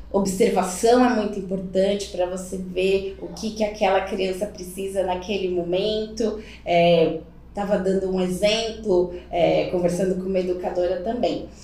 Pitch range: 195-285 Hz